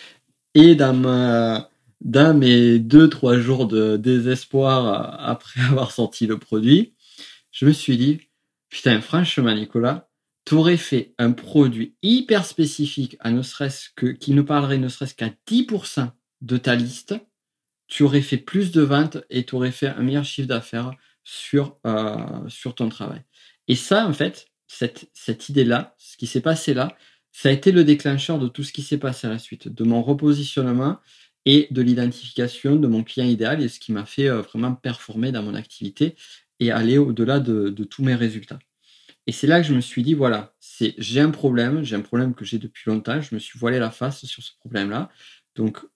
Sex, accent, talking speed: male, French, 190 wpm